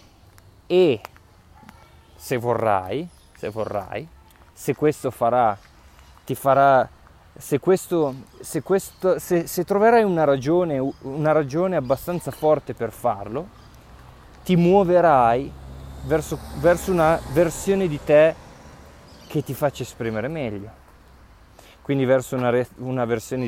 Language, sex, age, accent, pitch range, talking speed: Italian, male, 20-39, native, 110-155 Hz, 110 wpm